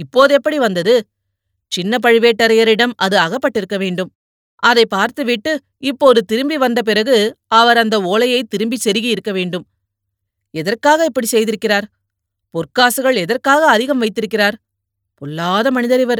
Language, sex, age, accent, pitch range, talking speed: Tamil, female, 30-49, native, 175-245 Hz, 105 wpm